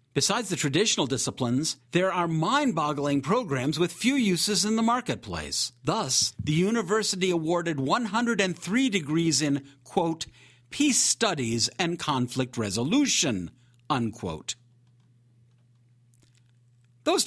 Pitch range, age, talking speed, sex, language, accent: 125-200 Hz, 50-69, 100 wpm, male, English, American